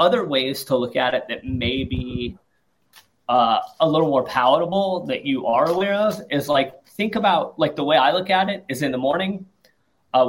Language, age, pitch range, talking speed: English, 30-49, 125-160 Hz, 205 wpm